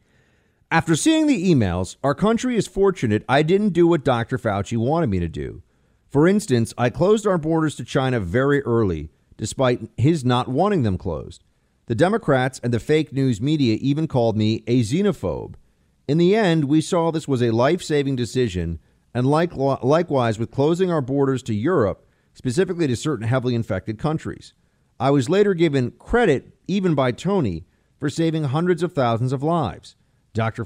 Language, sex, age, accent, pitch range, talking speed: English, male, 40-59, American, 115-155 Hz, 170 wpm